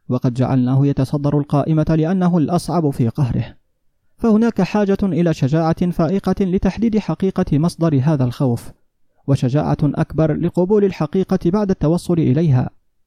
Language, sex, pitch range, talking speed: Arabic, male, 140-180 Hz, 115 wpm